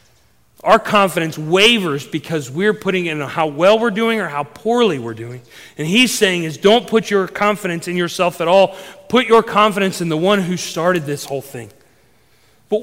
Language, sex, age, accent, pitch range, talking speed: English, male, 40-59, American, 150-220 Hz, 185 wpm